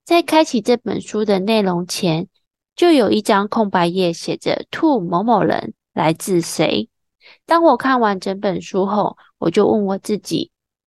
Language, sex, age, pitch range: Chinese, female, 20-39, 180-250 Hz